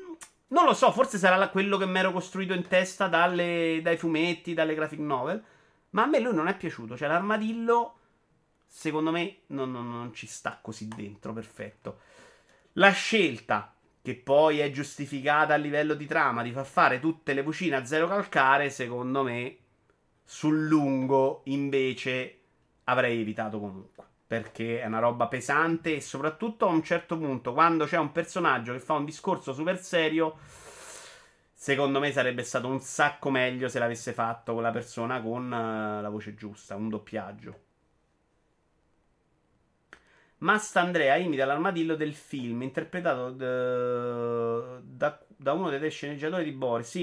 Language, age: Italian, 30-49